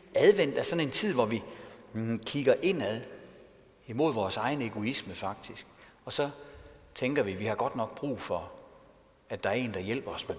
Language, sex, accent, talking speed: Danish, male, native, 190 wpm